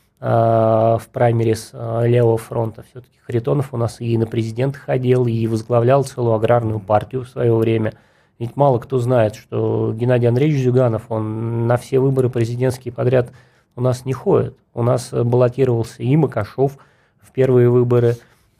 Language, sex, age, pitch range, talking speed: Russian, male, 20-39, 115-130 Hz, 150 wpm